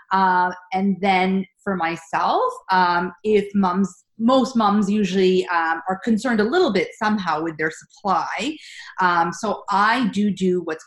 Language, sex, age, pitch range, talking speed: English, female, 30-49, 165-215 Hz, 150 wpm